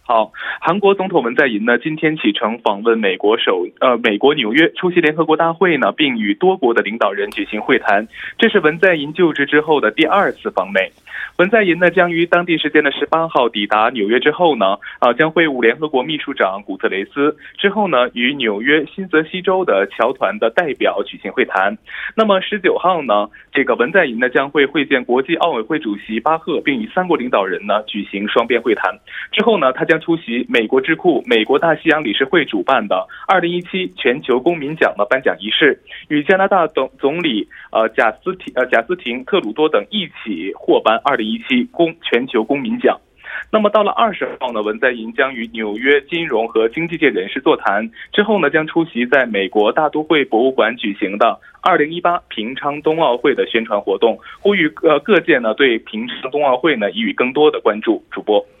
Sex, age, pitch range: male, 20-39, 145-210 Hz